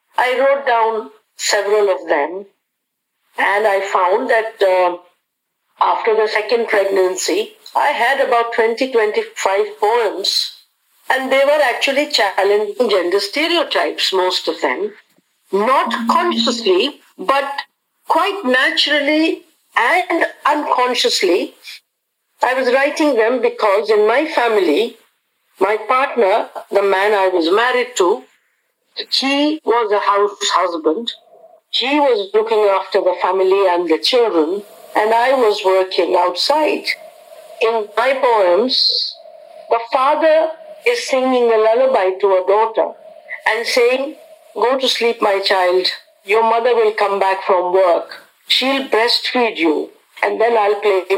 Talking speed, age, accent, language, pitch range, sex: 125 wpm, 60-79, Indian, English, 200-320 Hz, female